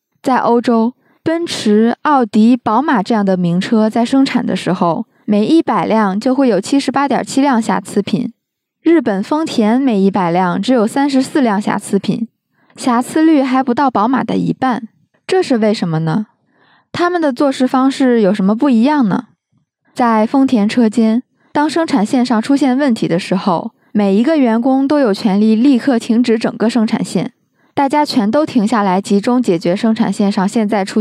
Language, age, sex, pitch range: Chinese, 20-39, female, 205-260 Hz